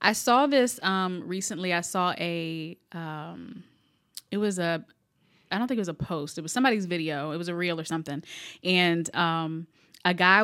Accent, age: American, 20-39